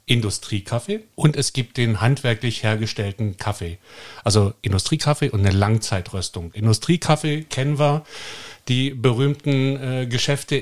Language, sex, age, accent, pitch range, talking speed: German, male, 50-69, German, 110-145 Hz, 115 wpm